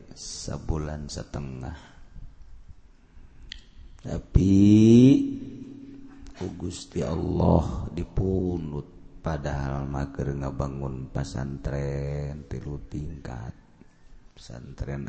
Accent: native